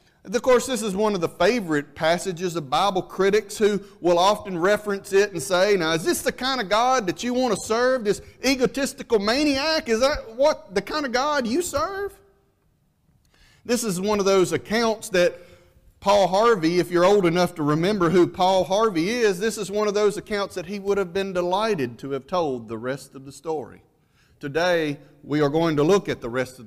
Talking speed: 205 wpm